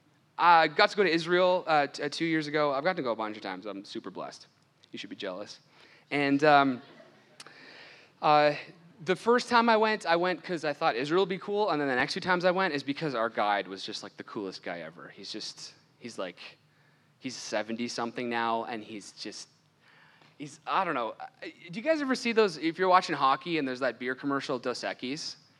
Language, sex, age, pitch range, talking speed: English, male, 20-39, 135-195 Hz, 220 wpm